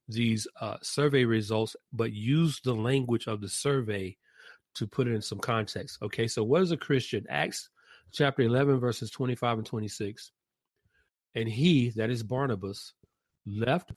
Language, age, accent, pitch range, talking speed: English, 40-59, American, 110-145 Hz, 155 wpm